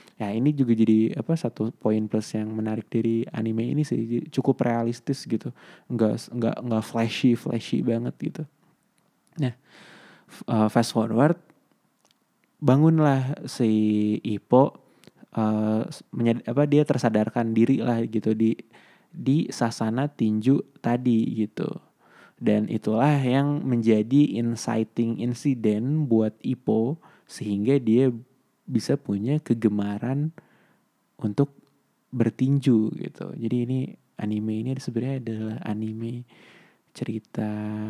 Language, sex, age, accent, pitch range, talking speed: Indonesian, male, 20-39, native, 110-135 Hz, 110 wpm